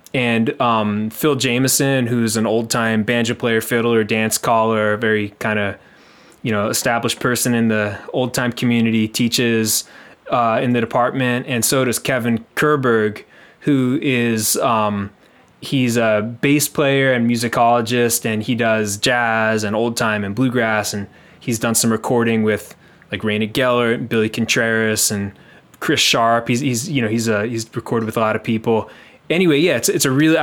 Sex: male